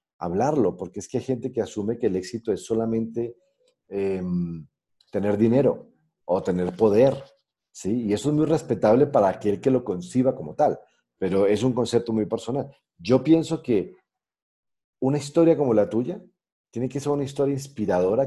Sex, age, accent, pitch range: male, 40-59, Mexican, 95-140 Hz